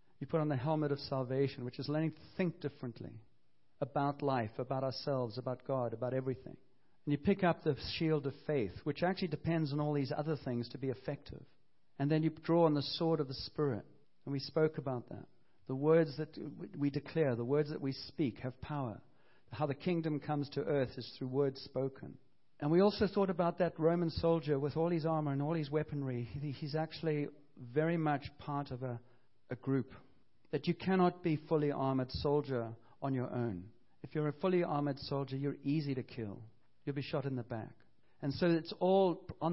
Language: English